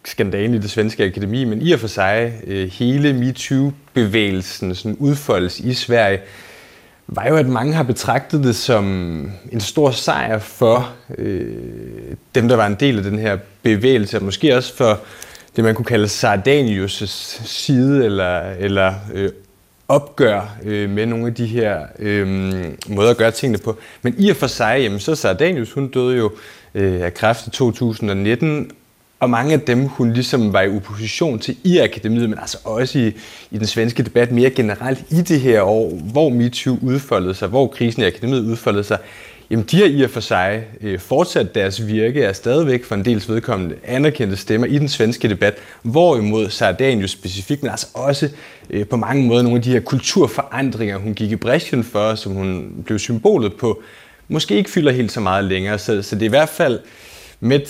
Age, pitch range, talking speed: 30-49, 100-130 Hz, 185 wpm